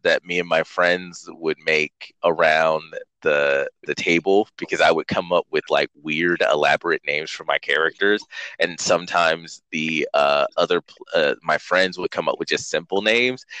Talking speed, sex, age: 170 wpm, male, 30-49